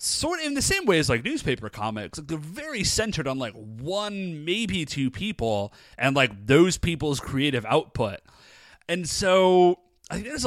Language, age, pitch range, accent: English, 30-49, 130-180 Hz, American